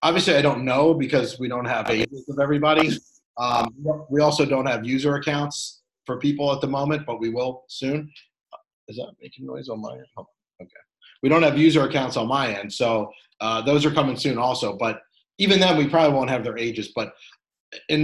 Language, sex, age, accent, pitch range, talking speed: English, male, 30-49, American, 125-155 Hz, 205 wpm